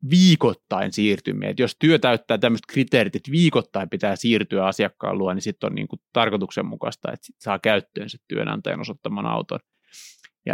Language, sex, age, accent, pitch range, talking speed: Finnish, male, 30-49, native, 110-130 Hz, 160 wpm